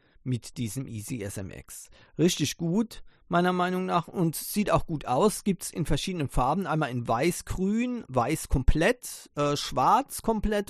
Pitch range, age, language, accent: 130-165 Hz, 40-59, German, German